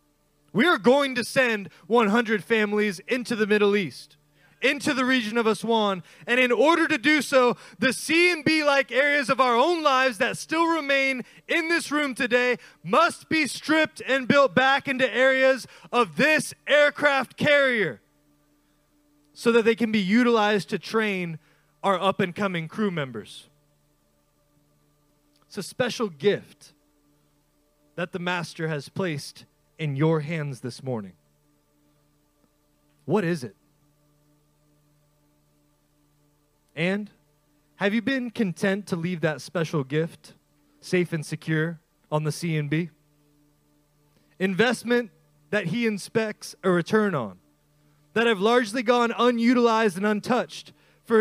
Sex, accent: male, American